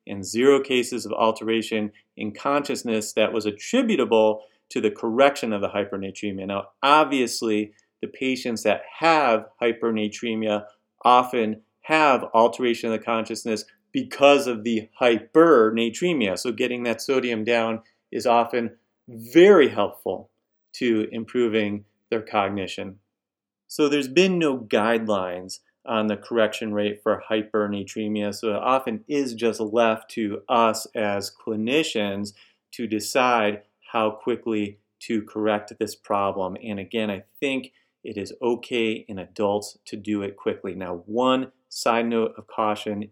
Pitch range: 105-130 Hz